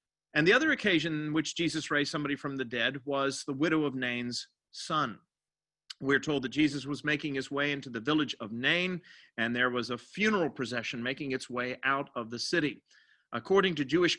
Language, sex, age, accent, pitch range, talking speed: English, male, 40-59, American, 140-185 Hz, 200 wpm